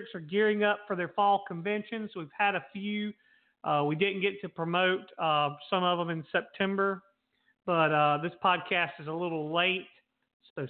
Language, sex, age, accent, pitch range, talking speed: English, male, 40-59, American, 170-215 Hz, 180 wpm